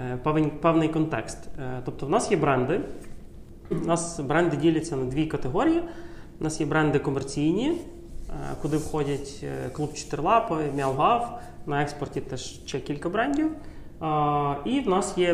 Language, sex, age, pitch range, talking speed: Ukrainian, male, 30-49, 140-170 Hz, 135 wpm